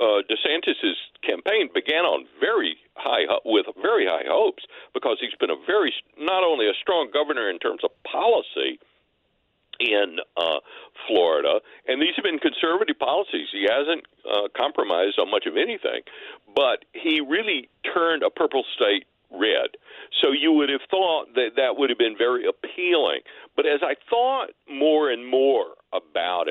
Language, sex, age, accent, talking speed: English, male, 60-79, American, 160 wpm